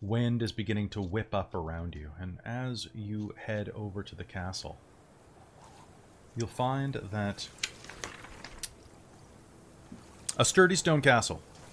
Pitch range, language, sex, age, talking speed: 105-135 Hz, English, male, 30-49, 120 wpm